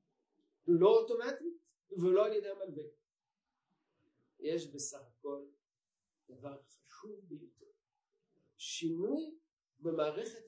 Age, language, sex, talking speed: 50-69, Hebrew, male, 80 wpm